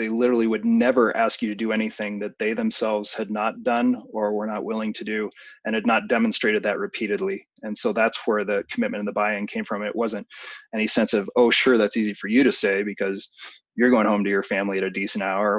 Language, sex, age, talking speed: English, male, 30-49, 240 wpm